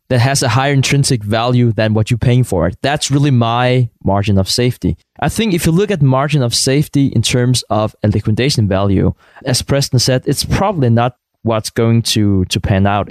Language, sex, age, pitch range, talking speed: English, male, 20-39, 115-140 Hz, 205 wpm